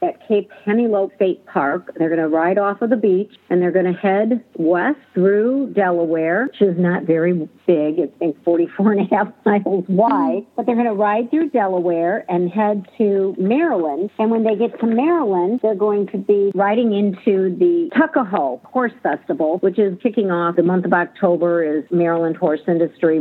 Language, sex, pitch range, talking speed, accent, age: English, female, 165-205 Hz, 185 wpm, American, 50-69